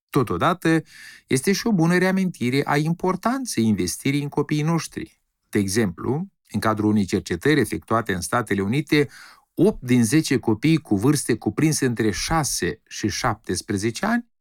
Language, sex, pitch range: Romanian, male, 105-160 Hz